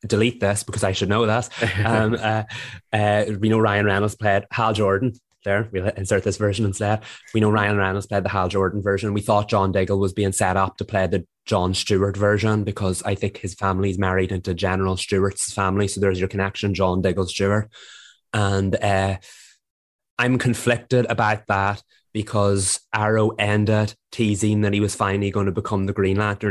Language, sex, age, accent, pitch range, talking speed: English, male, 20-39, Irish, 100-110 Hz, 190 wpm